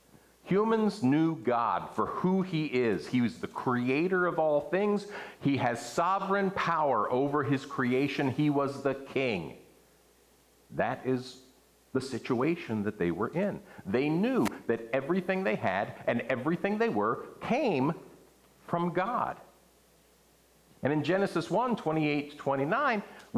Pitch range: 130-175 Hz